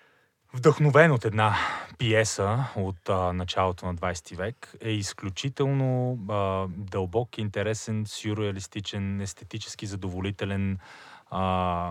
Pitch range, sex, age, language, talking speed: 95-115 Hz, male, 20-39, Bulgarian, 95 wpm